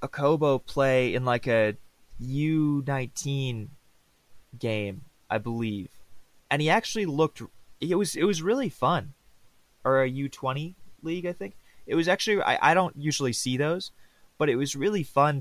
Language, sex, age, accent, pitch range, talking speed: English, male, 20-39, American, 110-140 Hz, 155 wpm